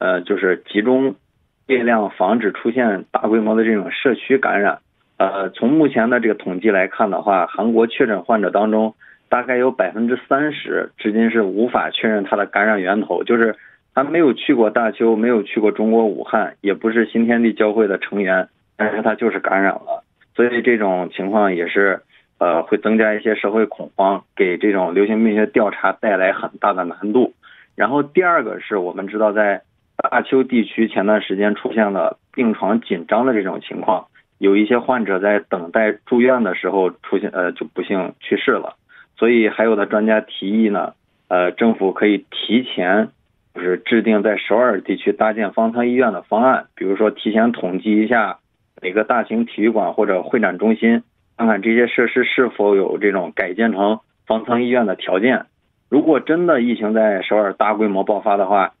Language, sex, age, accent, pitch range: Korean, male, 20-39, Chinese, 105-120 Hz